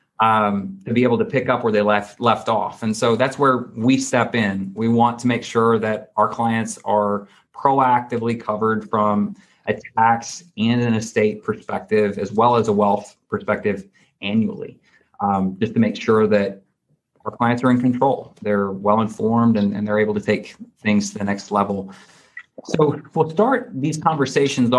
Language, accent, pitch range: English, American, 110-150 Hz